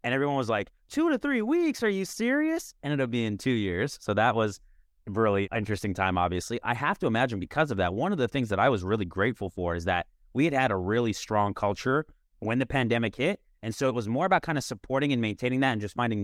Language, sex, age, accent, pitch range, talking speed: English, male, 30-49, American, 105-145 Hz, 255 wpm